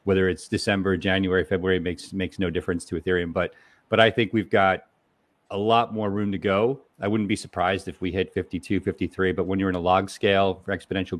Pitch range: 95-110 Hz